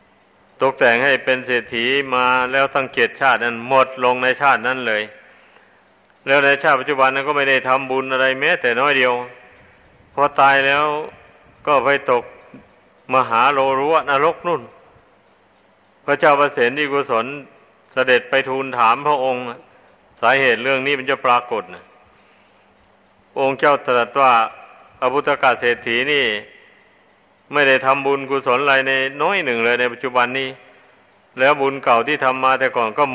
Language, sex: Thai, male